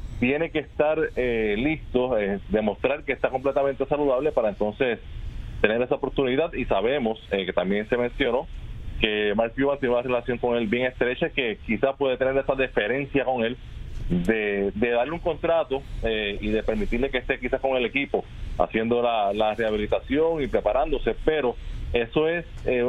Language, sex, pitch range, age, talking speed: English, male, 110-135 Hz, 30-49, 175 wpm